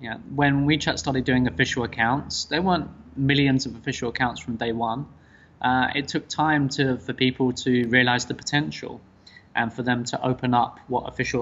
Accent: British